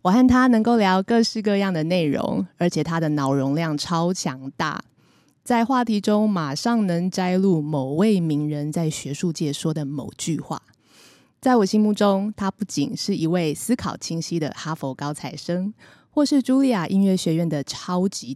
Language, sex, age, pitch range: Chinese, female, 20-39, 155-205 Hz